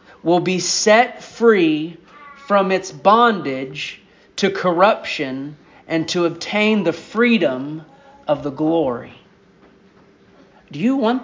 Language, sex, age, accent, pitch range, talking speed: English, male, 40-59, American, 155-230 Hz, 105 wpm